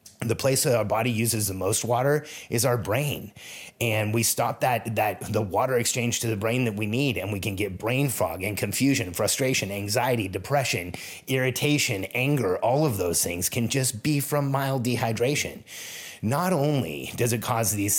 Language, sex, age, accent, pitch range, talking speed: English, male, 30-49, American, 110-135 Hz, 185 wpm